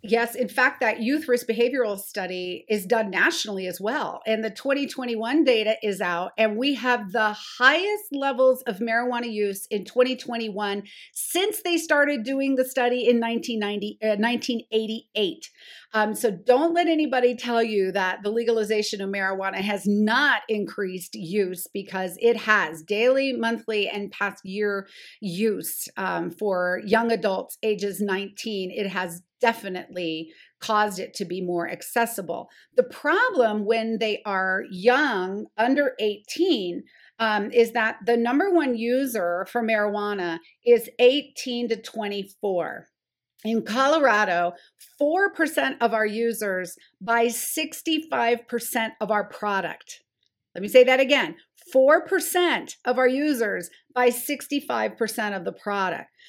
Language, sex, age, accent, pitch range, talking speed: English, female, 40-59, American, 205-255 Hz, 135 wpm